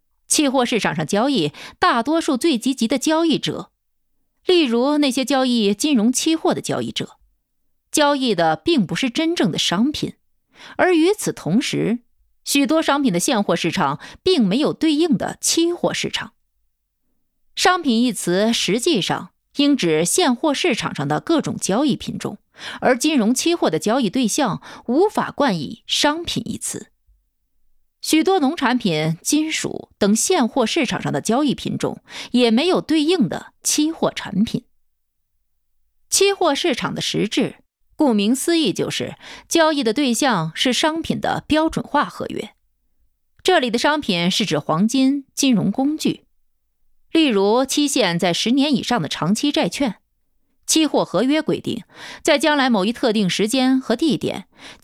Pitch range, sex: 225-315 Hz, female